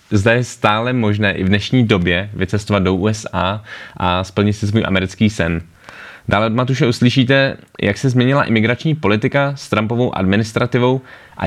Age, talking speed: 20-39, 155 wpm